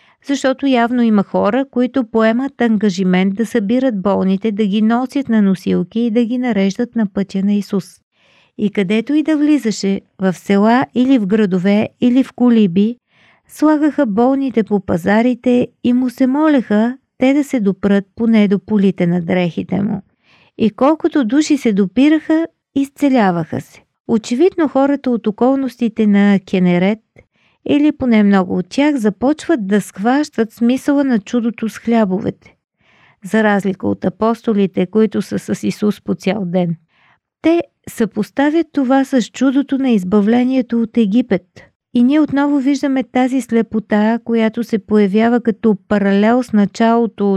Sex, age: female, 40-59